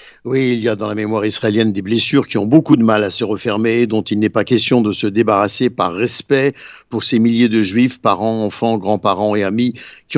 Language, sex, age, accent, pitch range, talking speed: Italian, male, 60-79, French, 110-140 Hz, 230 wpm